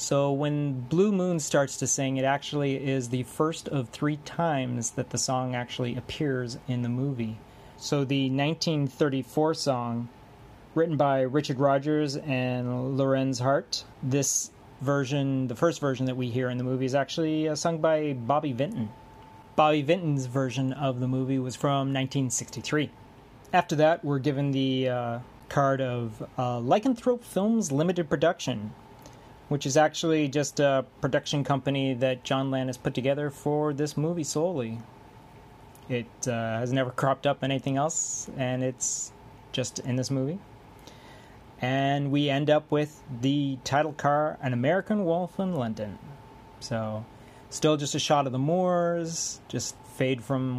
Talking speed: 150 wpm